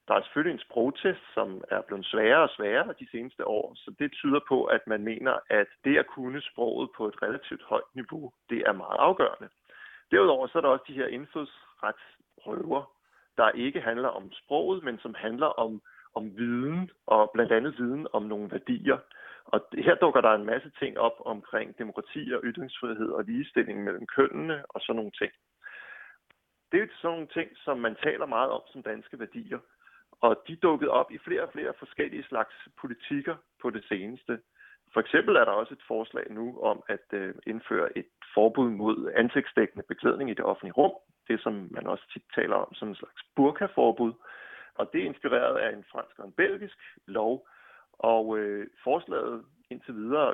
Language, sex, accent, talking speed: Danish, male, native, 185 wpm